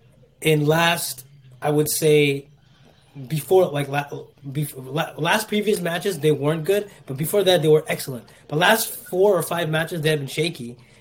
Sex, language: male, English